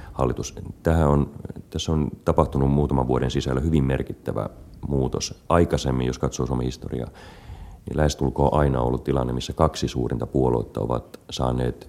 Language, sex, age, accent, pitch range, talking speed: Finnish, male, 30-49, native, 65-75 Hz, 135 wpm